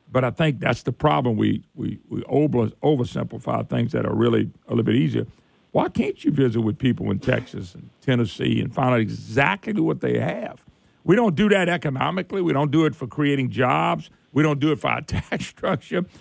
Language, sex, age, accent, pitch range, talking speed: English, male, 50-69, American, 135-195 Hz, 205 wpm